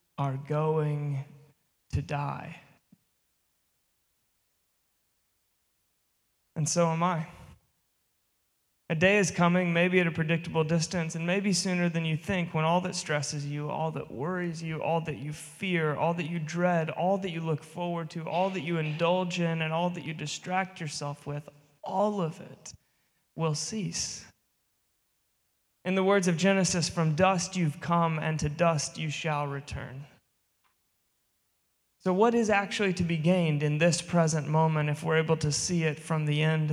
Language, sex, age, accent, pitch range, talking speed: English, male, 20-39, American, 150-175 Hz, 160 wpm